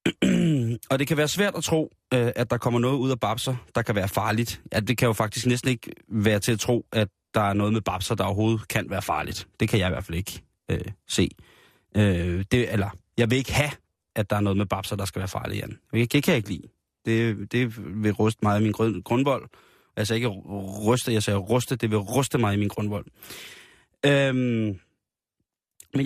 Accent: native